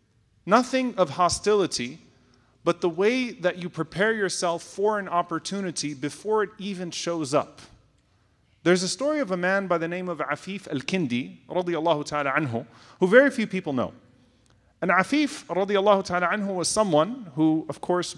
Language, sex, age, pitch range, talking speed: English, male, 30-49, 140-190 Hz, 160 wpm